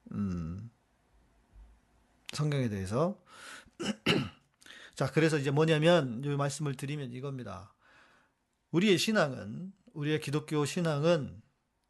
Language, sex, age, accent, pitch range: Korean, male, 40-59, native, 125-175 Hz